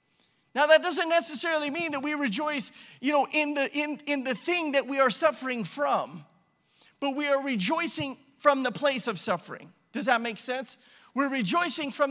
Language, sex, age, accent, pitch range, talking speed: English, male, 40-59, American, 200-275 Hz, 185 wpm